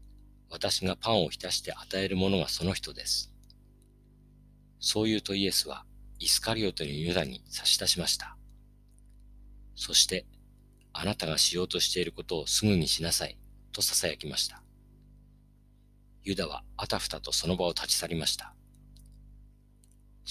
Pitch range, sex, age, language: 90-125 Hz, male, 40-59, Japanese